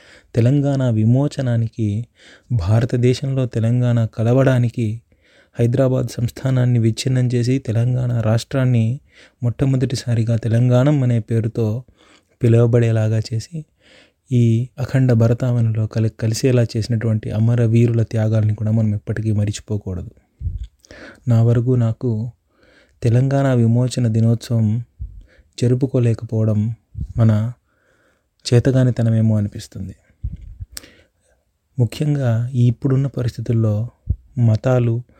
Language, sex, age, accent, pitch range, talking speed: Telugu, male, 30-49, native, 110-125 Hz, 70 wpm